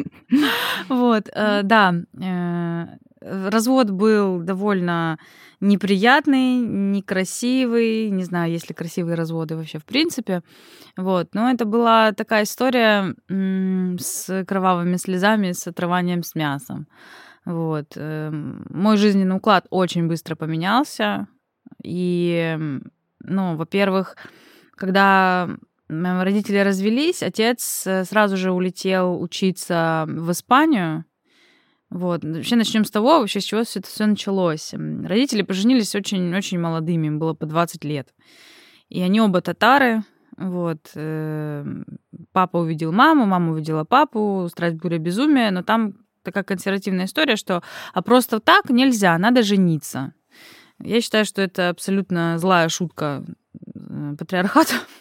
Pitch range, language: 170-220 Hz, Russian